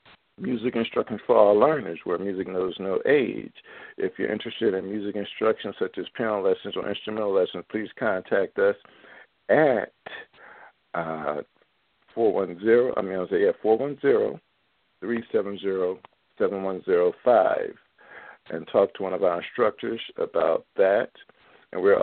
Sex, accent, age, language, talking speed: male, American, 50-69, English, 125 wpm